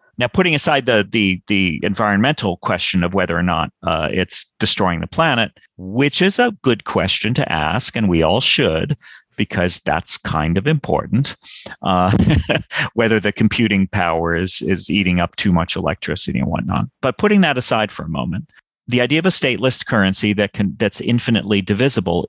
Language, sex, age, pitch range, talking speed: English, male, 40-59, 90-120 Hz, 175 wpm